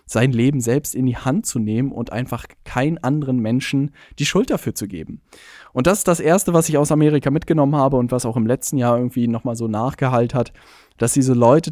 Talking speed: 220 wpm